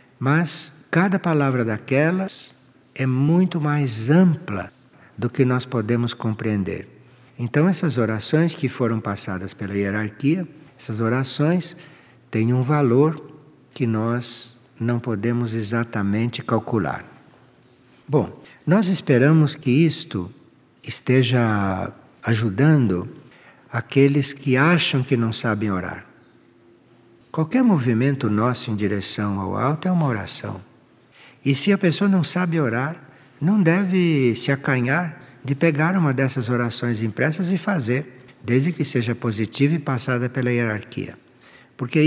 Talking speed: 120 wpm